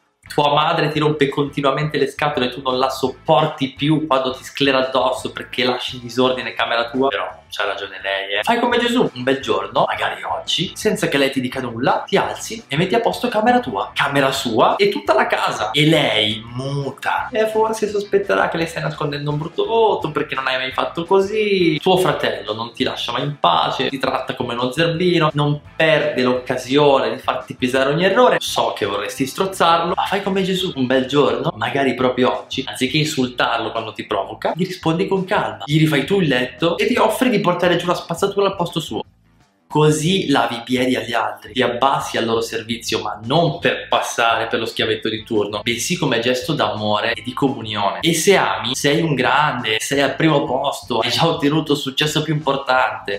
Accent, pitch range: native, 115-155 Hz